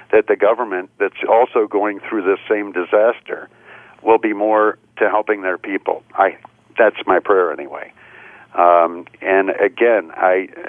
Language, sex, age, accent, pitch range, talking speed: English, male, 60-79, American, 105-130 Hz, 145 wpm